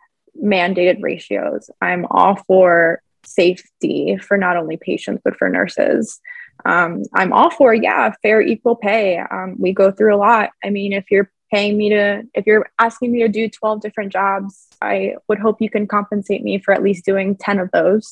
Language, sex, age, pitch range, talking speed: English, female, 20-39, 195-260 Hz, 190 wpm